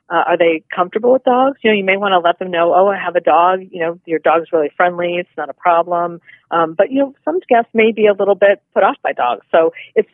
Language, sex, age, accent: English, female, 40-59, American